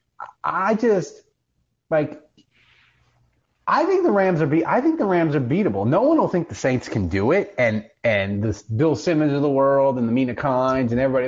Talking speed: 200 wpm